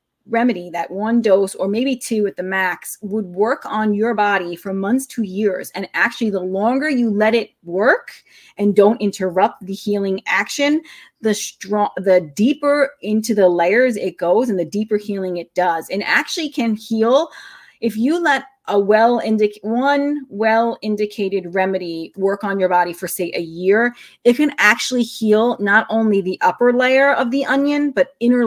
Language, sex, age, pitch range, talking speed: English, female, 30-49, 190-240 Hz, 175 wpm